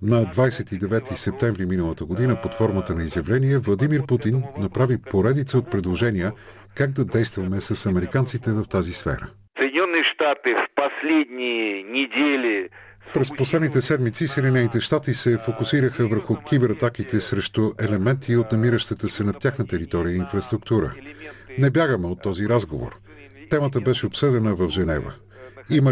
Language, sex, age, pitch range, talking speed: Bulgarian, male, 50-69, 100-130 Hz, 125 wpm